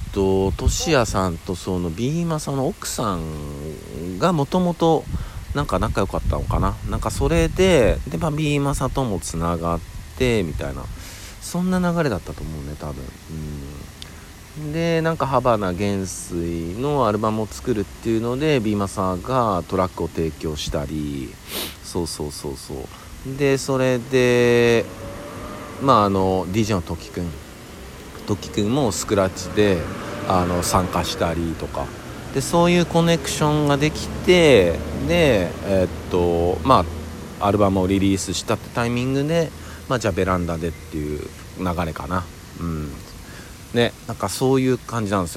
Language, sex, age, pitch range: Japanese, male, 50-69, 85-125 Hz